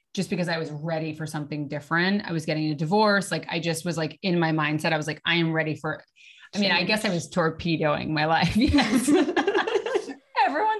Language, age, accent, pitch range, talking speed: English, 30-49, American, 160-205 Hz, 210 wpm